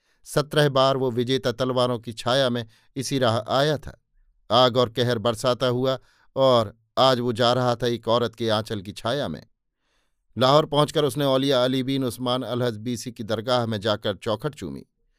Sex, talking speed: male, 180 wpm